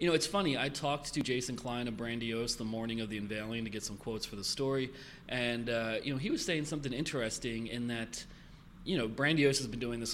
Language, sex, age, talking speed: English, male, 30-49, 245 wpm